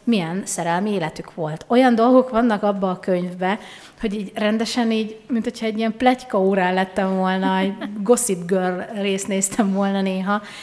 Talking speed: 160 wpm